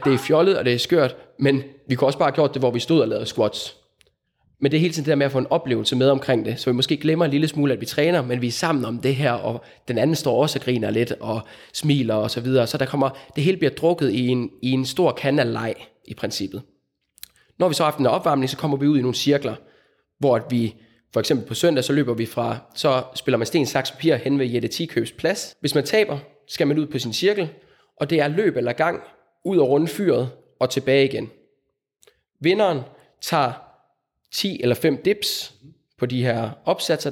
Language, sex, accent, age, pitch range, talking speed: Danish, male, native, 20-39, 125-155 Hz, 240 wpm